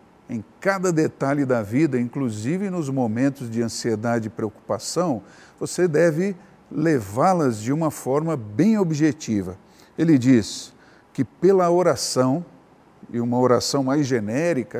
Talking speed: 120 wpm